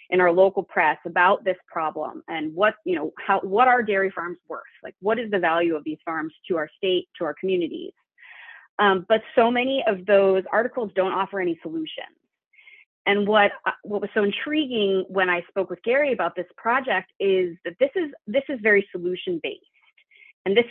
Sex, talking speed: female, 190 wpm